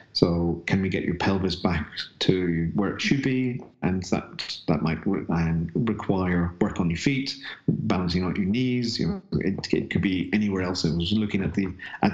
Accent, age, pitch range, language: British, 40-59, 95-105 Hz, English